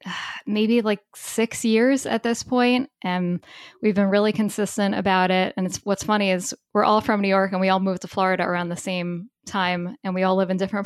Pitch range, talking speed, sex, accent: 185-230 Hz, 225 wpm, female, American